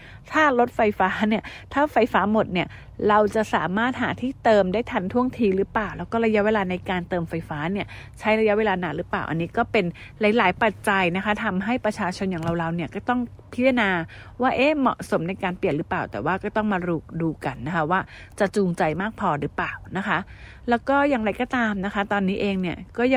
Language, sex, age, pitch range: English, female, 30-49, 185-225 Hz